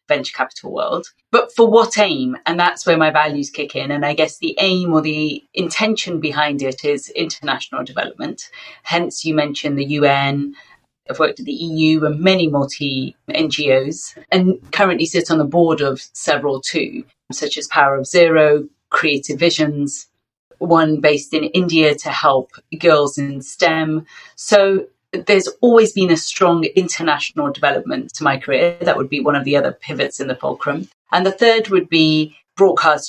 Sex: female